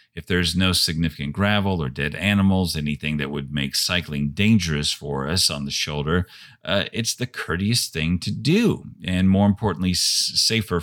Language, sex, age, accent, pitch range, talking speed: English, male, 50-69, American, 80-110 Hz, 165 wpm